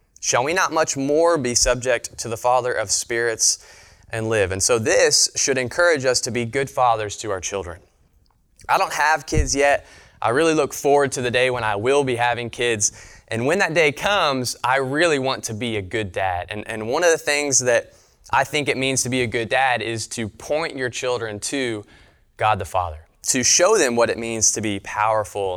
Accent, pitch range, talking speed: American, 105-130 Hz, 215 wpm